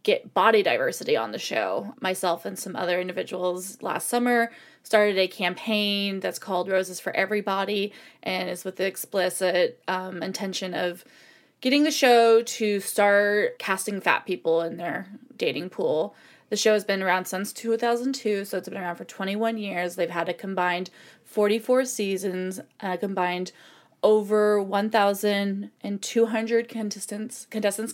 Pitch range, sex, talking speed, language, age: 185-225 Hz, female, 140 wpm, English, 20-39